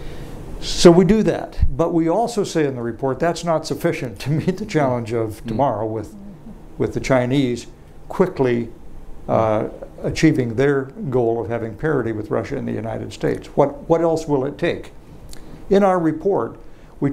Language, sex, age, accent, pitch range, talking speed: English, male, 60-79, American, 125-160 Hz, 170 wpm